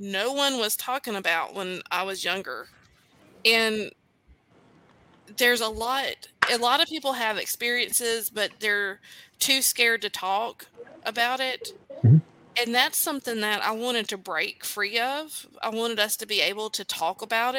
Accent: American